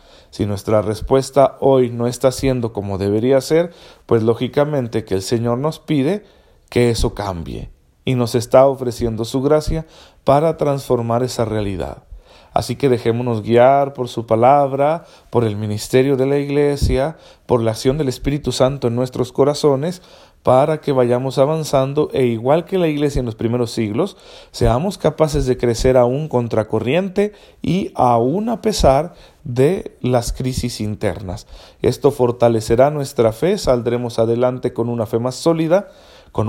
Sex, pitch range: male, 115-145 Hz